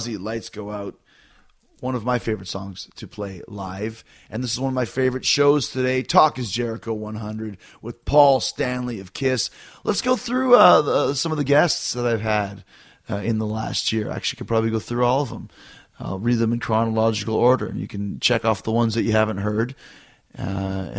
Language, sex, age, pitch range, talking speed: English, male, 30-49, 100-125 Hz, 210 wpm